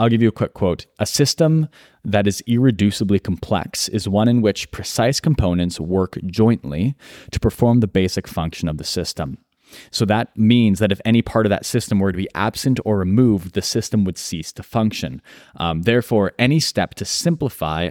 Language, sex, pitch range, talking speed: English, male, 90-110 Hz, 190 wpm